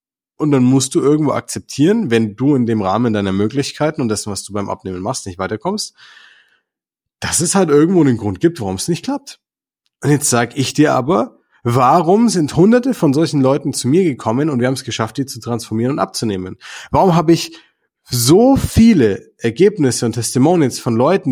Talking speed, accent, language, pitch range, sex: 190 wpm, German, German, 115-160 Hz, male